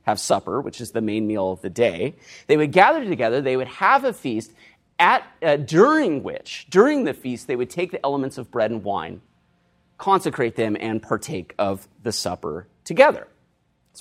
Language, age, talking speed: English, 30-49, 190 wpm